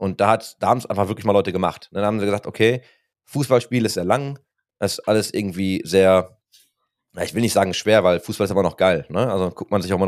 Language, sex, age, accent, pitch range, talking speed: German, male, 30-49, German, 100-115 Hz, 250 wpm